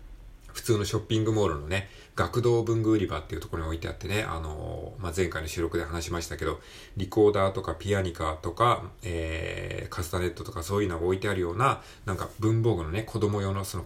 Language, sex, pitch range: Japanese, male, 85-120 Hz